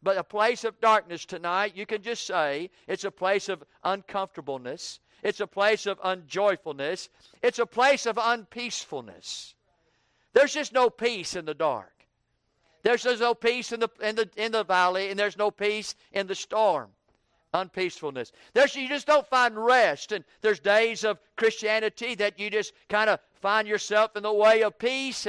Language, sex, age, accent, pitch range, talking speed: English, male, 50-69, American, 195-235 Hz, 175 wpm